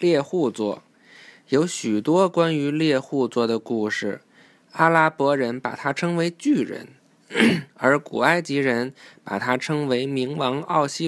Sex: male